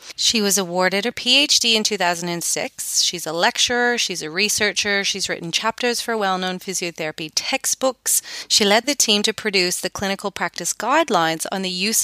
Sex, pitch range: female, 175-220 Hz